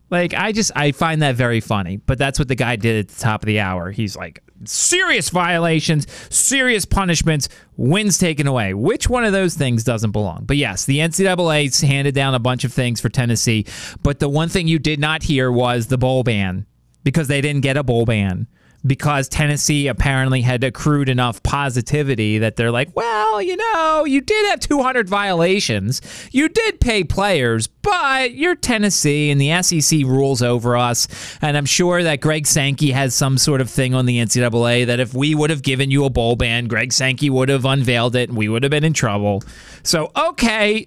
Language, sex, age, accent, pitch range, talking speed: English, male, 30-49, American, 120-165 Hz, 200 wpm